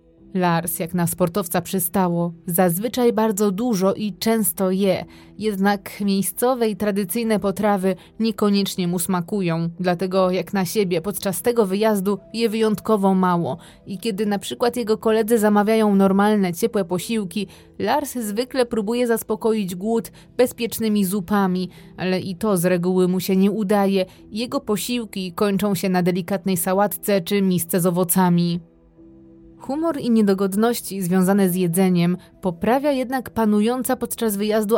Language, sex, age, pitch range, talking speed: Polish, female, 20-39, 185-220 Hz, 135 wpm